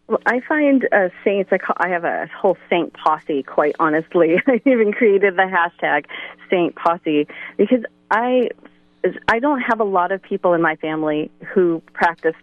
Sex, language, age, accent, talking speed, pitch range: female, English, 30-49, American, 175 wpm, 170-220 Hz